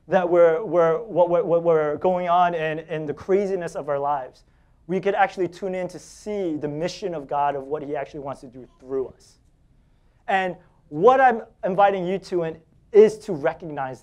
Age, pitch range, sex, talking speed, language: 30-49, 145-190 Hz, male, 195 wpm, English